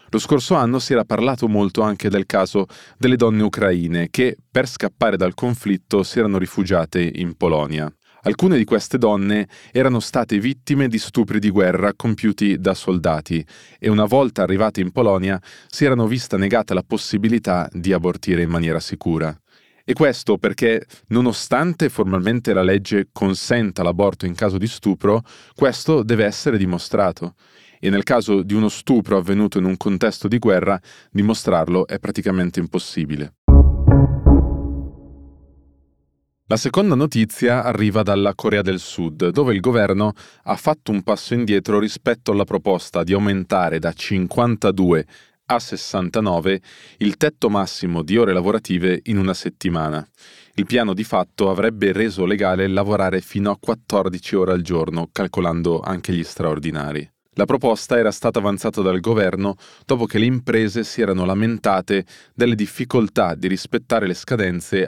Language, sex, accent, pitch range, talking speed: Italian, male, native, 90-115 Hz, 145 wpm